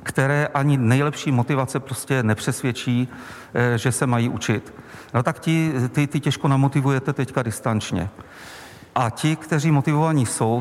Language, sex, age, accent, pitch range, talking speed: Czech, male, 50-69, native, 120-150 Hz, 125 wpm